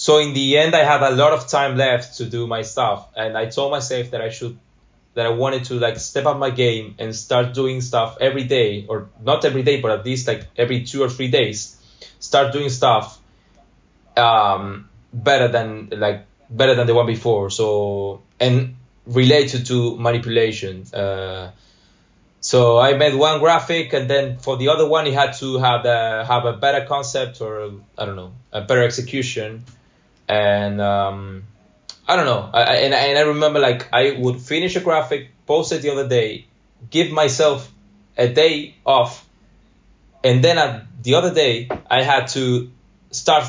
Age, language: 20-39, English